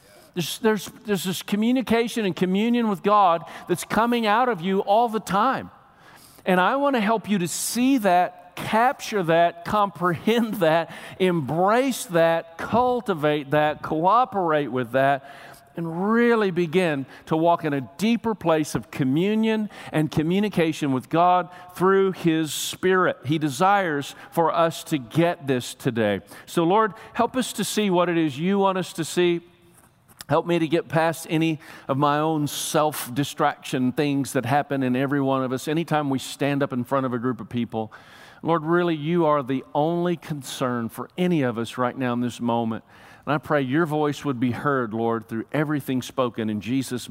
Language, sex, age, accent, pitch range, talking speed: English, male, 50-69, American, 140-190 Hz, 175 wpm